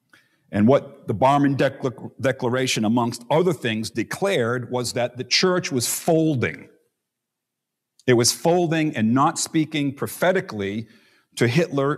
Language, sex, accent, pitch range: English, male, American, 115-145 Hz